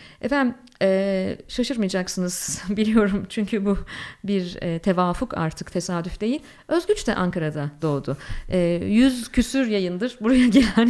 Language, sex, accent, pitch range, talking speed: Turkish, female, native, 180-250 Hz, 105 wpm